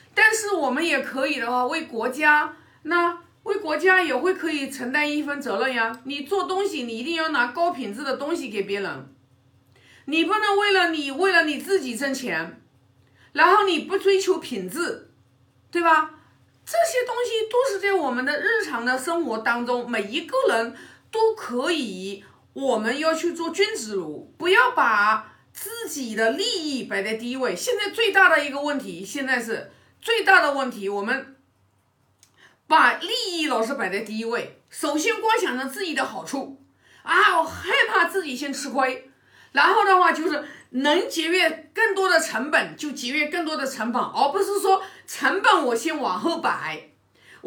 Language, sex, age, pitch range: Chinese, female, 50-69, 260-385 Hz